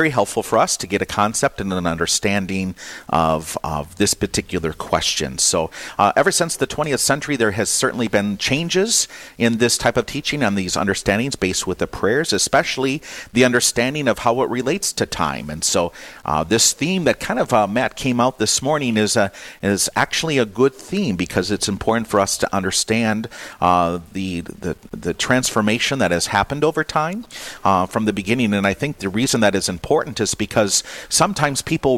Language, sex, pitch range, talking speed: English, male, 95-120 Hz, 195 wpm